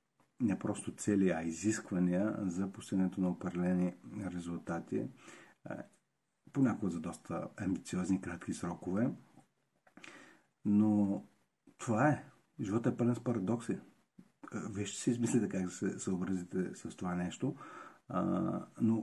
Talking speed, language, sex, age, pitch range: 105 wpm, Bulgarian, male, 50-69, 90-100 Hz